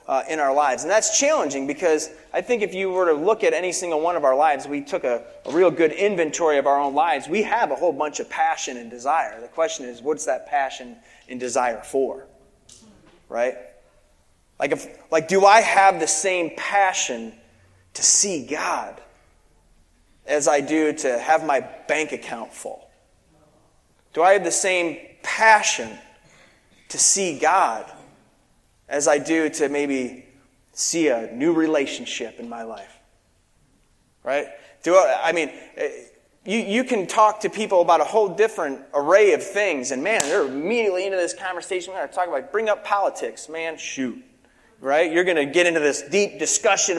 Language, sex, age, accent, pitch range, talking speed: English, male, 30-49, American, 140-195 Hz, 170 wpm